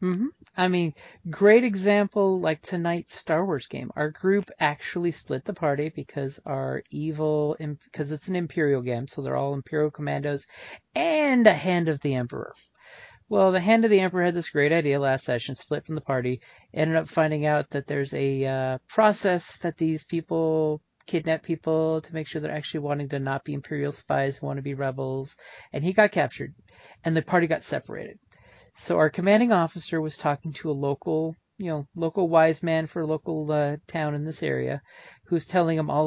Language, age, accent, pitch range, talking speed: English, 40-59, American, 145-175 Hz, 195 wpm